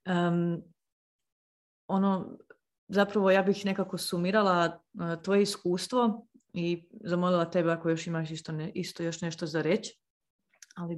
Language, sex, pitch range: Croatian, female, 170-205 Hz